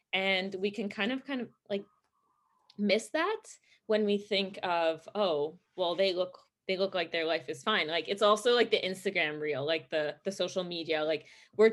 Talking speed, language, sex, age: 200 wpm, English, female, 20-39